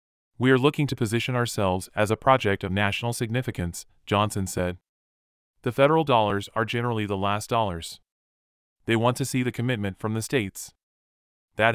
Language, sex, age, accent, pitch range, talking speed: English, male, 30-49, American, 100-120 Hz, 165 wpm